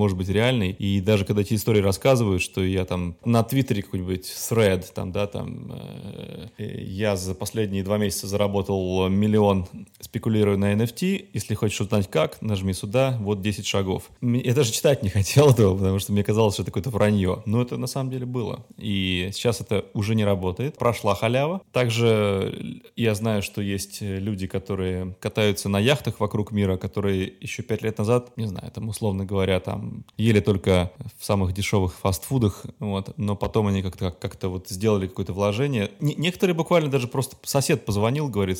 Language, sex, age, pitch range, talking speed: Russian, male, 20-39, 100-120 Hz, 175 wpm